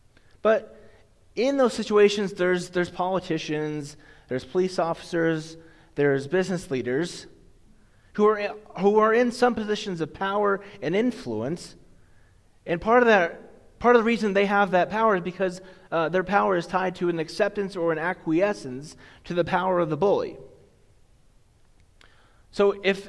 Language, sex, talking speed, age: English, male, 150 wpm, 30-49